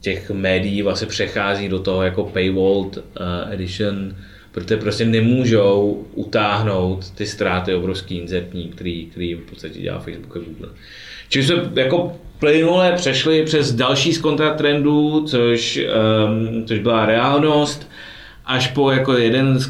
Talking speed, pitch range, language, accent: 135 wpm, 105-120 Hz, Czech, native